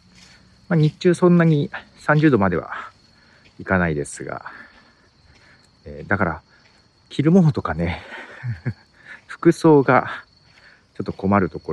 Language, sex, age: Japanese, male, 50-69